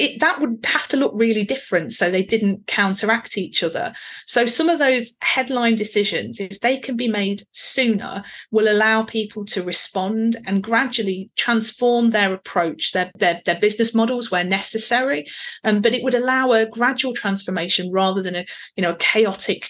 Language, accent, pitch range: English, British, 195-245 Hz